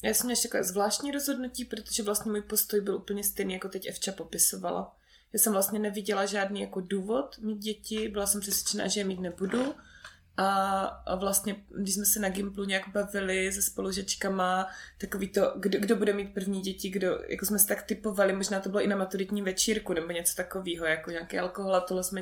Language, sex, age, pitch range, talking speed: Czech, female, 20-39, 190-220 Hz, 195 wpm